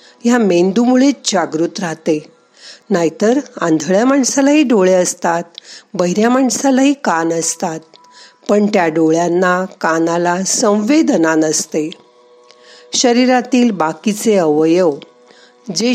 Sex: female